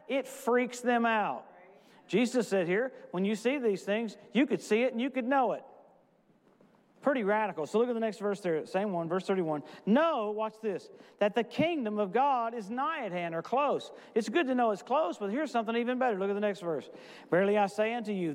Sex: male